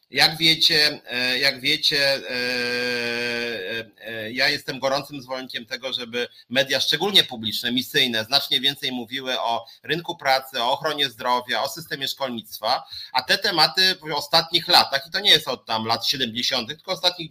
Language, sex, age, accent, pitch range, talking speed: Polish, male, 30-49, native, 135-200 Hz, 145 wpm